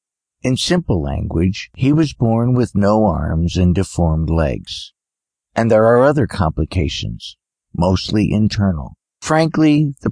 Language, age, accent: English, 50-69, American